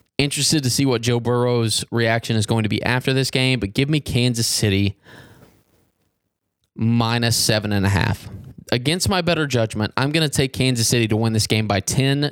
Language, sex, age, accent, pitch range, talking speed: English, male, 20-39, American, 105-135 Hz, 195 wpm